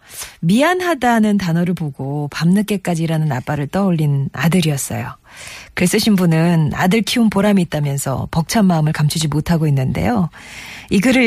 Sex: female